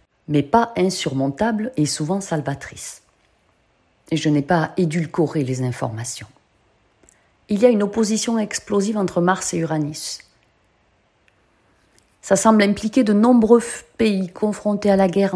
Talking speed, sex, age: 130 wpm, female, 40-59